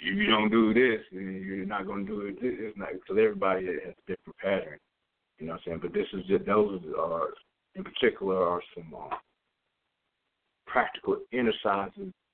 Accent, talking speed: American, 185 wpm